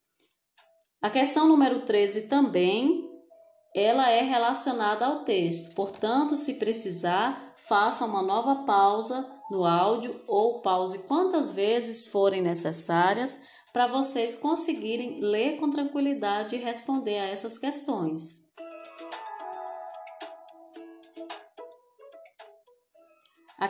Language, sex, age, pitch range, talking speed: Portuguese, female, 10-29, 200-315 Hz, 95 wpm